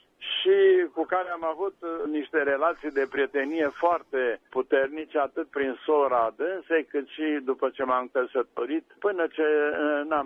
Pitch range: 125-175 Hz